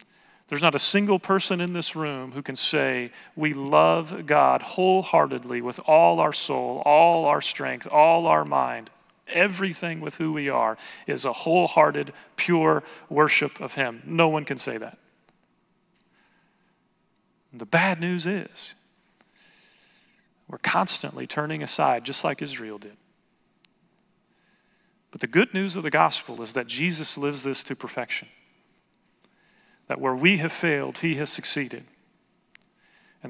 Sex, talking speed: male, 140 wpm